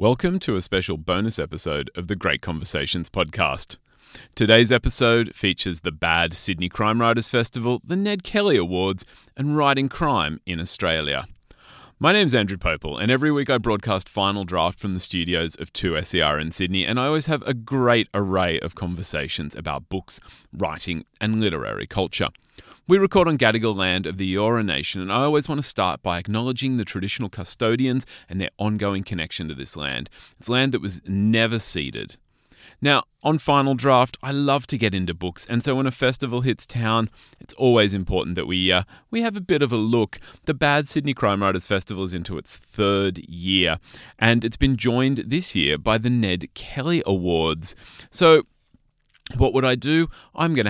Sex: male